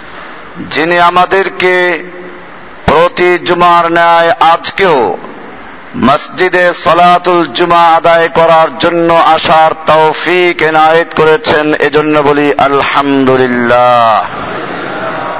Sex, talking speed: male, 75 wpm